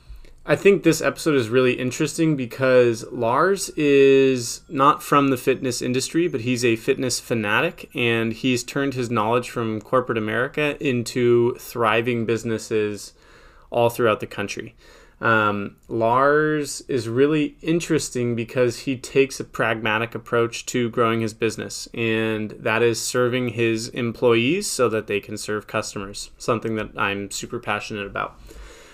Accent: American